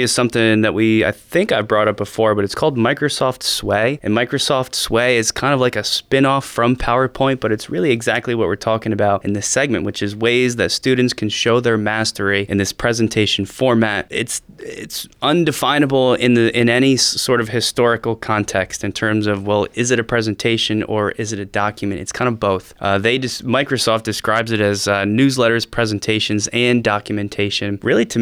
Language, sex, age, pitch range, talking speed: English, male, 20-39, 105-120 Hz, 195 wpm